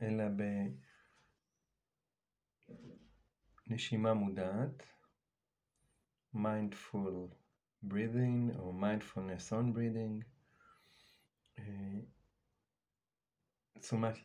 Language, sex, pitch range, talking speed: Hebrew, male, 100-130 Hz, 40 wpm